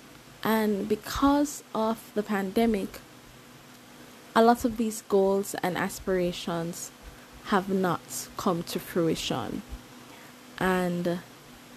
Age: 20-39